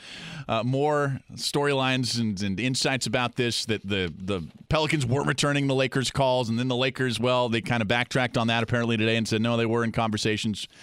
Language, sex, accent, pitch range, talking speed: English, male, American, 110-135 Hz, 205 wpm